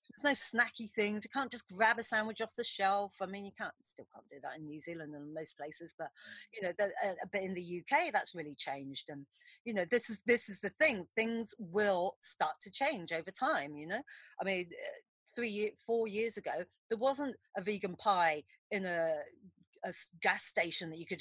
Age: 40-59